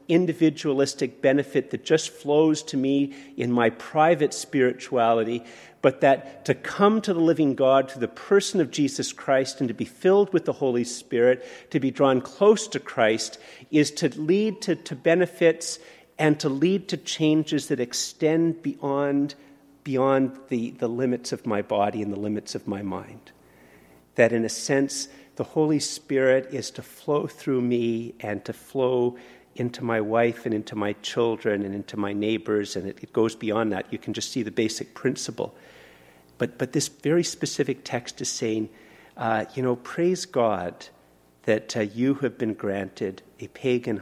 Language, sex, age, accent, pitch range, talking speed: English, male, 50-69, American, 110-145 Hz, 170 wpm